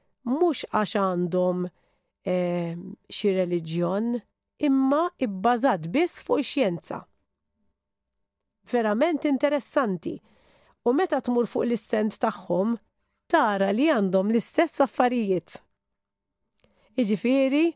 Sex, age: female, 50-69